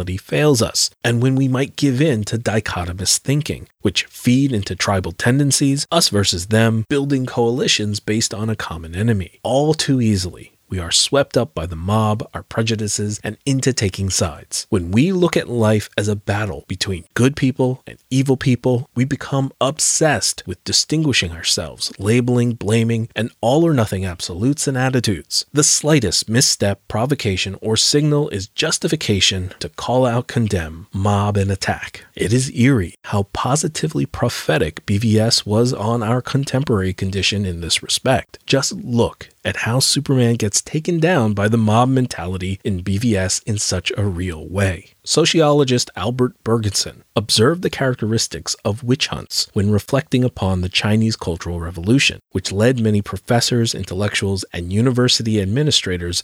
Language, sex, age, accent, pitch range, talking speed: English, male, 30-49, American, 95-130 Hz, 150 wpm